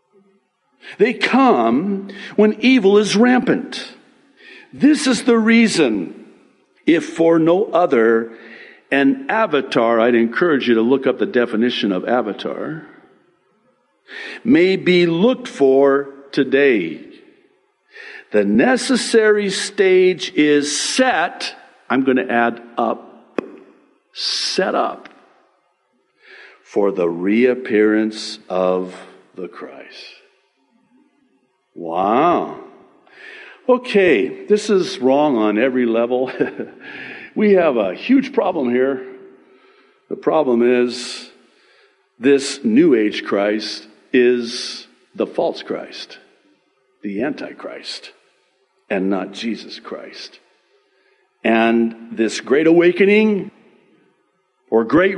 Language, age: English, 60-79